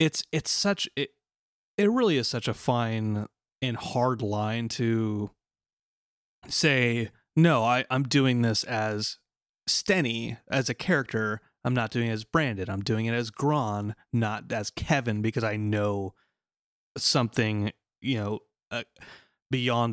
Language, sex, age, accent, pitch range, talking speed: English, male, 30-49, American, 110-140 Hz, 140 wpm